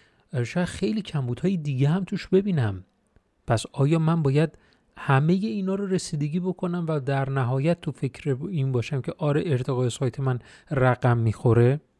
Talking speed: 150 wpm